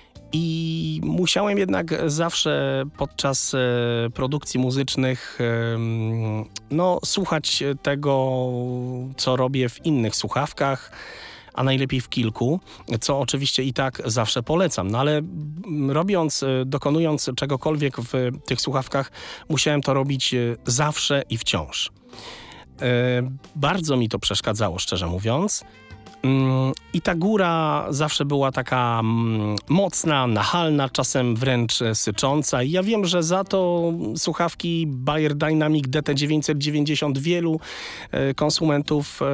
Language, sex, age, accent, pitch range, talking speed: Polish, male, 30-49, native, 125-155 Hz, 100 wpm